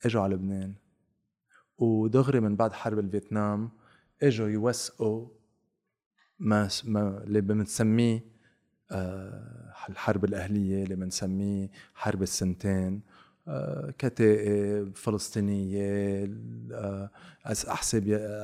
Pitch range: 100-120 Hz